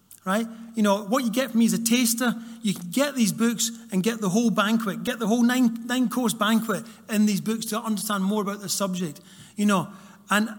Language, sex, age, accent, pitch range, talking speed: English, male, 30-49, British, 180-230 Hz, 225 wpm